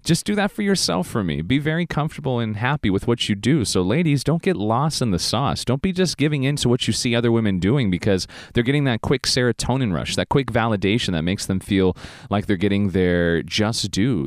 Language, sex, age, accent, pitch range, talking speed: English, male, 30-49, American, 90-150 Hz, 235 wpm